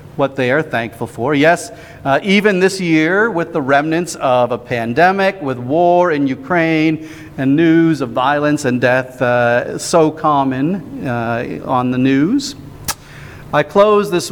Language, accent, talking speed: English, American, 150 wpm